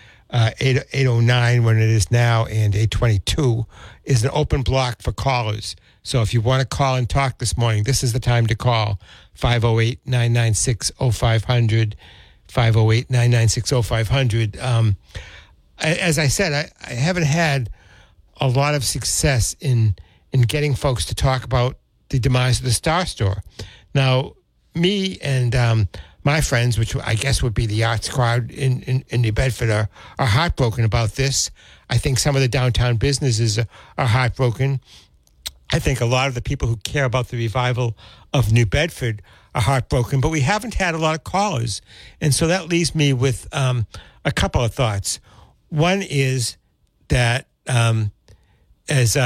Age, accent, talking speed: 60-79, American, 160 wpm